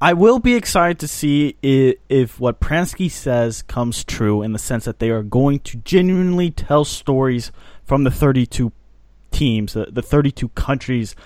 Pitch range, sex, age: 125-175 Hz, male, 20-39